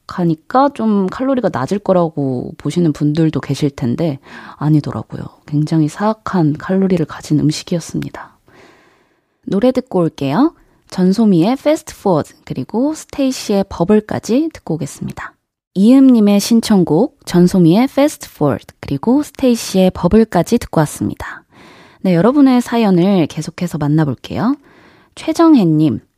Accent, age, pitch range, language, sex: native, 20-39, 155-240 Hz, Korean, female